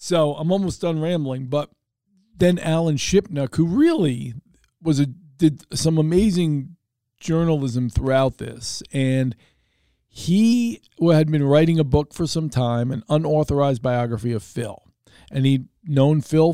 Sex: male